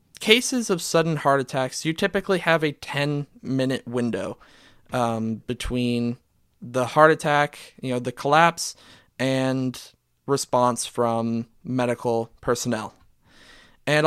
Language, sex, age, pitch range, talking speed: English, male, 20-39, 120-155 Hz, 115 wpm